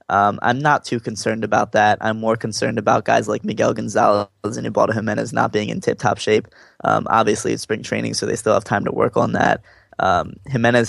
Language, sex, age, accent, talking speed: English, male, 20-39, American, 220 wpm